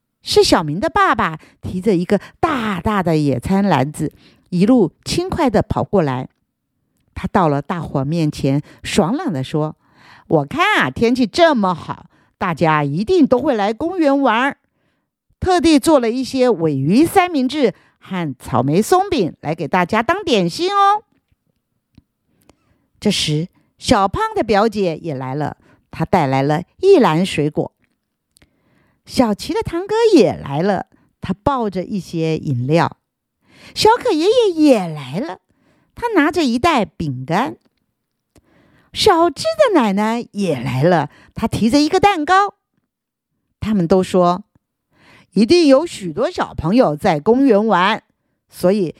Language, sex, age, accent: Chinese, female, 50-69, American